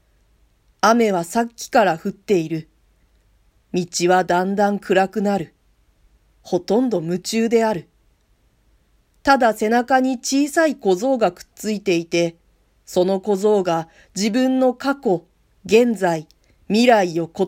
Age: 40-59